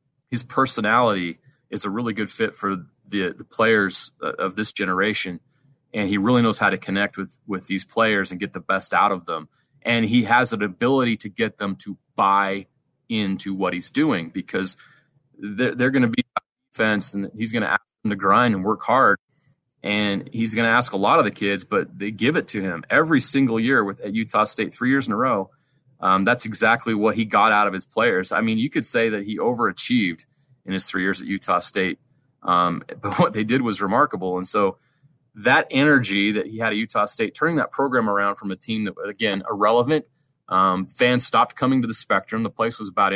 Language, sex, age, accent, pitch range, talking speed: English, male, 30-49, American, 100-125 Hz, 215 wpm